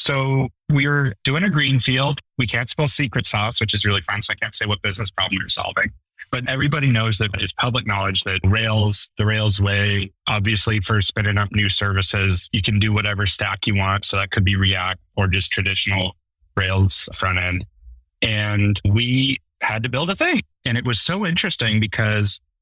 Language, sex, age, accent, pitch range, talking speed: English, male, 30-49, American, 100-120 Hz, 195 wpm